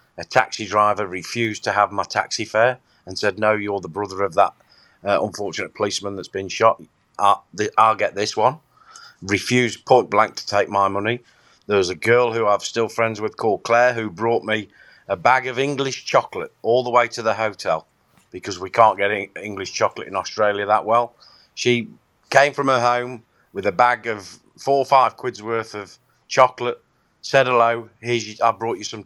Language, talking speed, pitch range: English, 195 wpm, 100-120 Hz